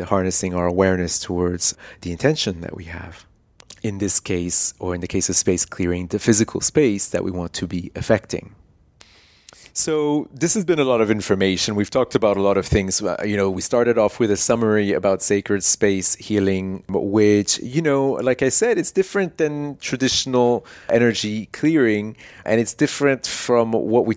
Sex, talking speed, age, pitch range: male, 180 wpm, 30-49, 95-120 Hz